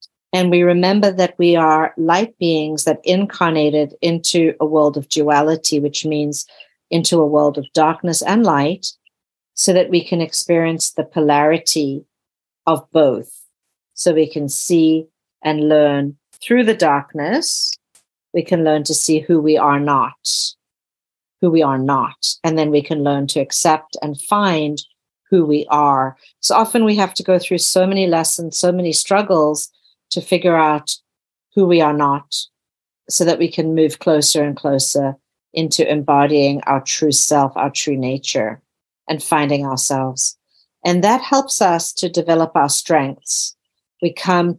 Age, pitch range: 50-69, 145-175 Hz